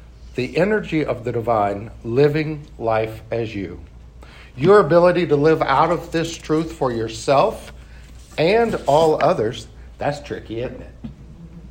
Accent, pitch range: American, 110-165 Hz